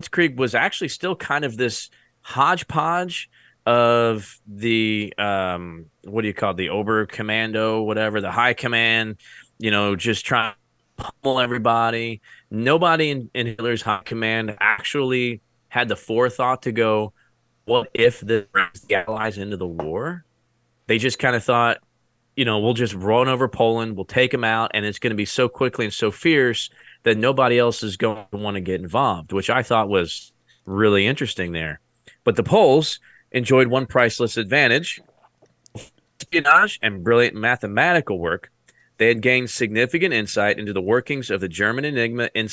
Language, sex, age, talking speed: English, male, 20-39, 165 wpm